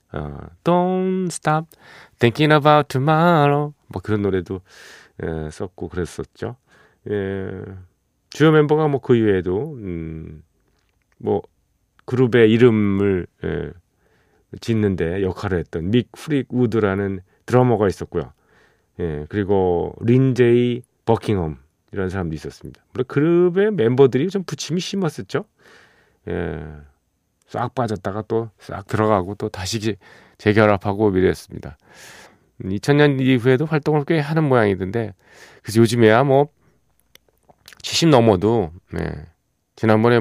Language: Korean